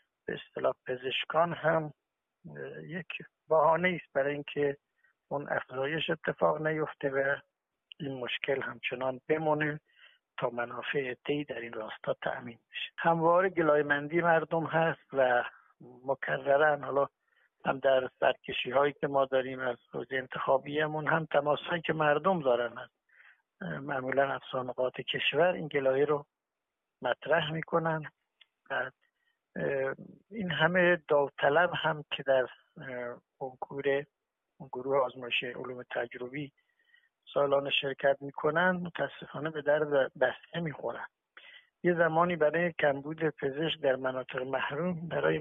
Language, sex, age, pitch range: Persian, male, 60-79, 135-165 Hz